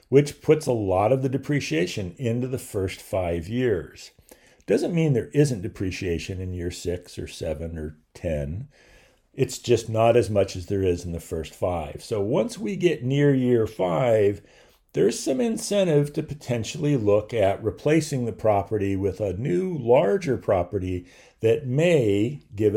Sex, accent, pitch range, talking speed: male, American, 90-135 Hz, 160 wpm